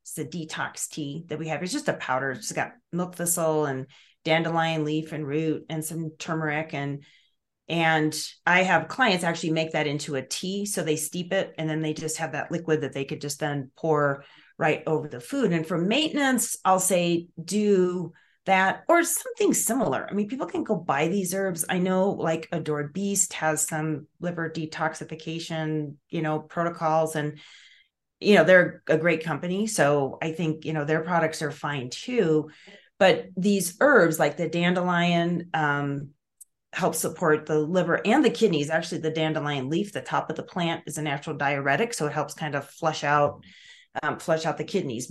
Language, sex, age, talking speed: English, female, 30-49, 190 wpm